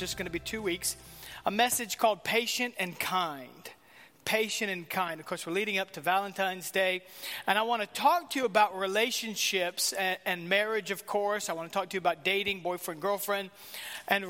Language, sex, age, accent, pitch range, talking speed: English, male, 40-59, American, 180-225 Hz, 195 wpm